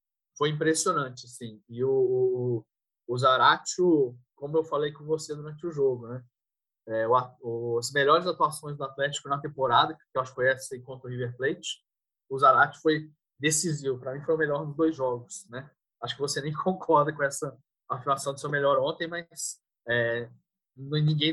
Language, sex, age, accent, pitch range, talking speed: Portuguese, male, 20-39, Brazilian, 125-155 Hz, 170 wpm